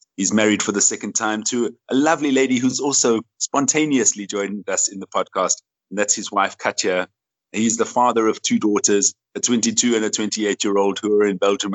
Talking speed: 195 wpm